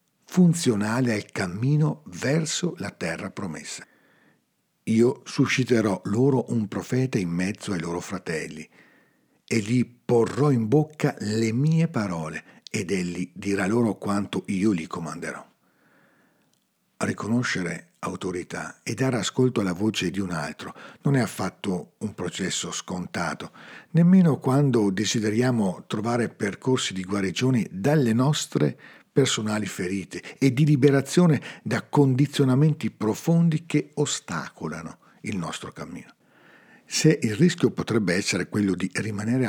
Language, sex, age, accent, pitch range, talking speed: Italian, male, 50-69, native, 95-140 Hz, 120 wpm